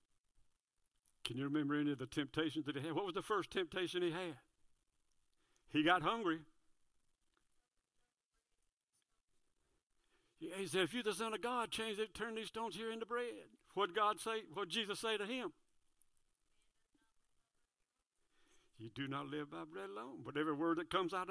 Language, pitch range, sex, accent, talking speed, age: English, 160-225 Hz, male, American, 165 wpm, 60-79